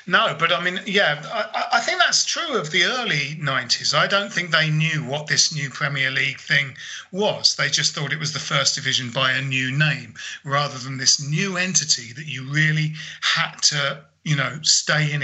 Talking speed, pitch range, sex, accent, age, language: 205 wpm, 140-165 Hz, male, British, 30-49, English